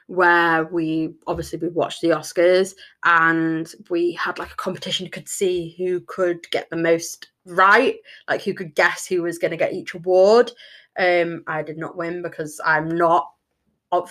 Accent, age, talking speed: British, 20-39, 175 wpm